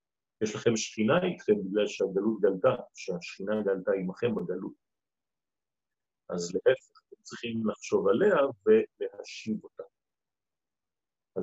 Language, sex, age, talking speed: French, male, 50-69, 105 wpm